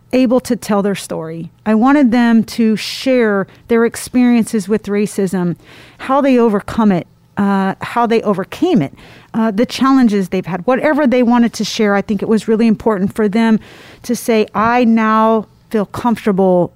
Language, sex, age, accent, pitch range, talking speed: English, female, 40-59, American, 205-245 Hz, 170 wpm